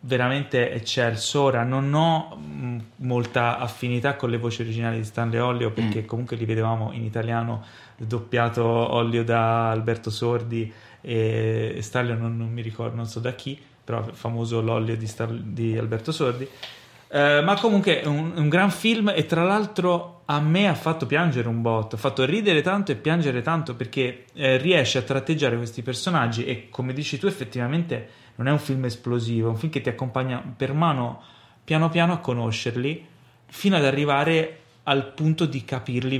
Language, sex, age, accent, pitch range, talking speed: Italian, male, 30-49, native, 115-150 Hz, 170 wpm